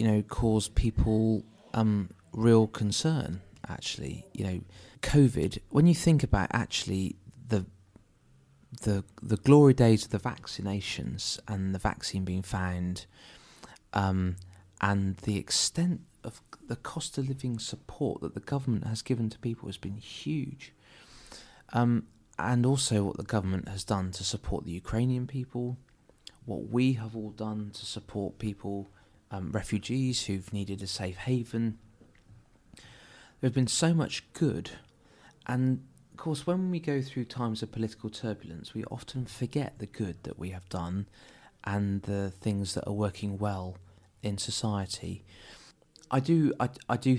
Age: 30-49